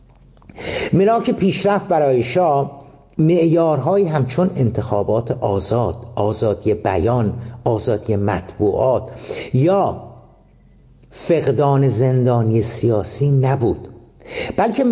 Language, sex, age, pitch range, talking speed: Persian, male, 60-79, 120-170 Hz, 70 wpm